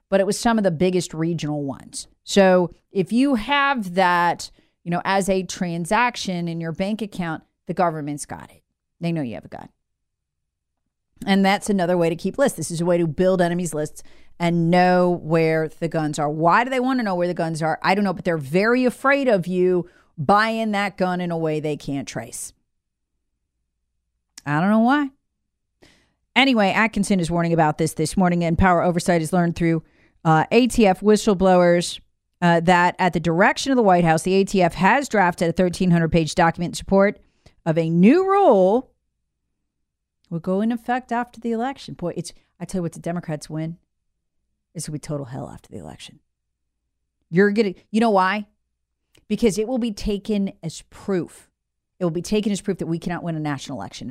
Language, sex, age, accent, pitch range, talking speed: English, female, 40-59, American, 160-200 Hz, 195 wpm